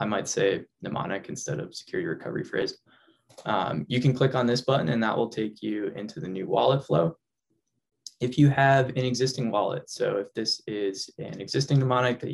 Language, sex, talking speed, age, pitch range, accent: English, male, 195 wpm, 10-29, 110-125 Hz, American